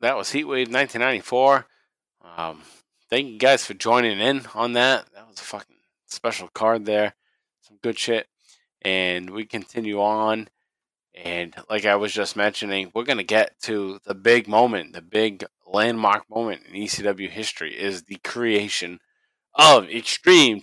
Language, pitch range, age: English, 95-115 Hz, 20-39